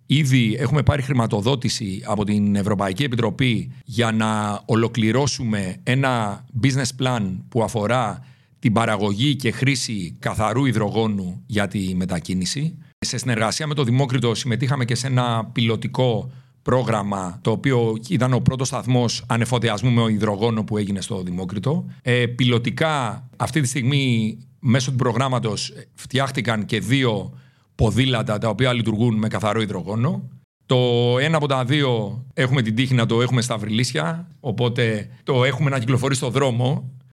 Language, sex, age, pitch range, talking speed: Greek, male, 50-69, 110-135 Hz, 140 wpm